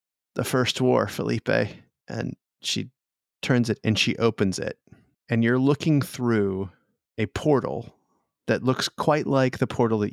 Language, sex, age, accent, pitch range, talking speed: English, male, 30-49, American, 100-125 Hz, 150 wpm